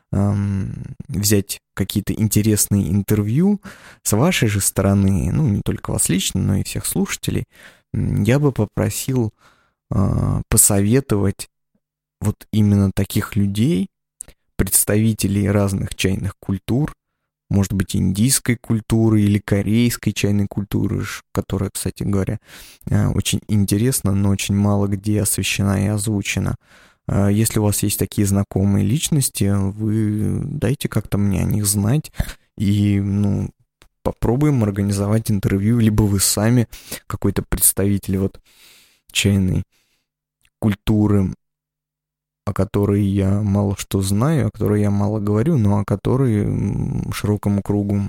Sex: male